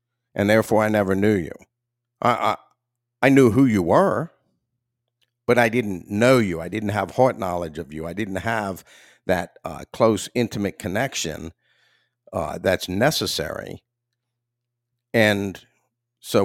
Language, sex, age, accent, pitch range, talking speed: English, male, 50-69, American, 100-120 Hz, 140 wpm